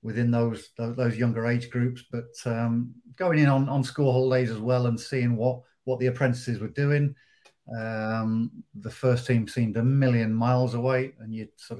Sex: male